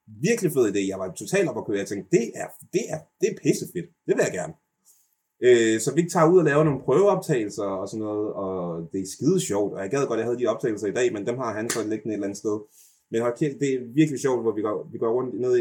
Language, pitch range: Danish, 100-150 Hz